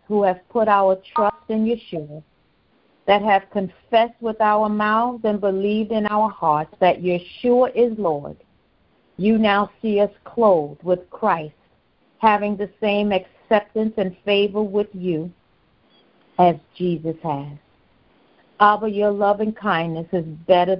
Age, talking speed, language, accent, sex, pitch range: 50-69, 135 wpm, English, American, female, 175-215 Hz